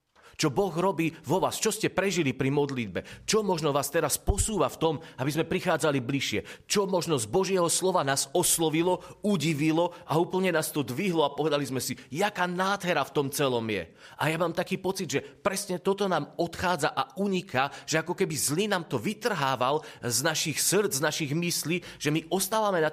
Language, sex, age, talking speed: Slovak, male, 30-49, 190 wpm